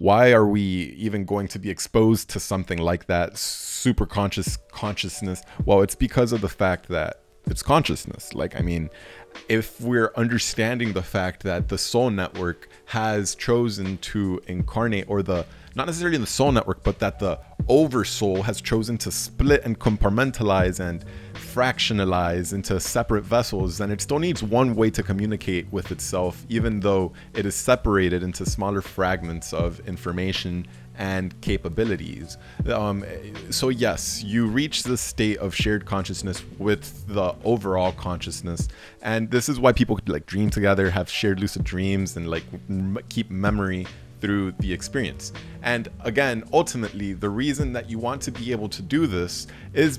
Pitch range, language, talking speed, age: 95-120 Hz, English, 160 wpm, 30-49